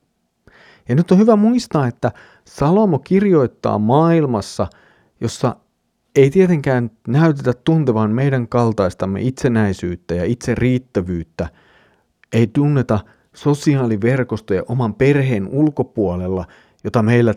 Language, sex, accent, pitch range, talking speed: Finnish, male, native, 110-155 Hz, 95 wpm